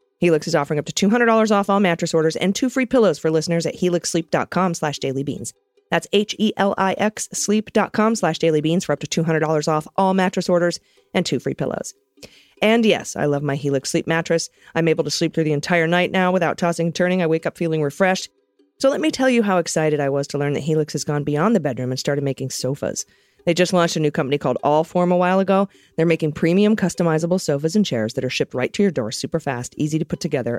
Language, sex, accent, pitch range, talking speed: English, female, American, 145-195 Hz, 230 wpm